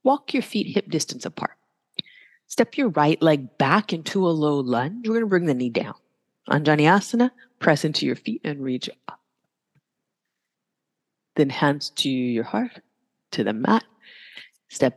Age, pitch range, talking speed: 30-49, 155-235 Hz, 155 wpm